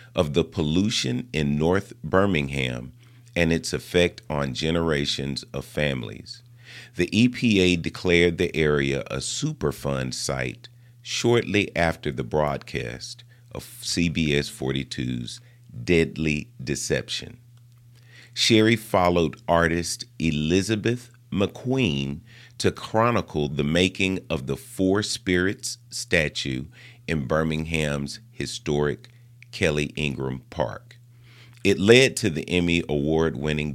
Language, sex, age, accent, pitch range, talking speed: English, male, 40-59, American, 75-120 Hz, 100 wpm